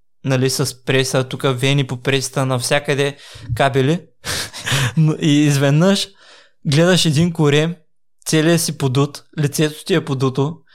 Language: Bulgarian